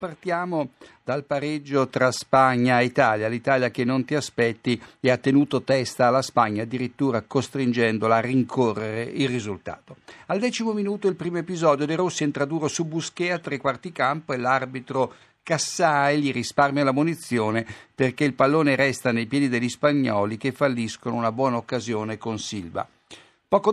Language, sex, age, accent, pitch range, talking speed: Italian, male, 50-69, native, 125-160 Hz, 155 wpm